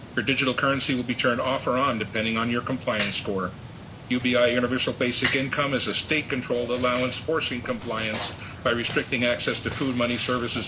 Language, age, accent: English, 50-69, American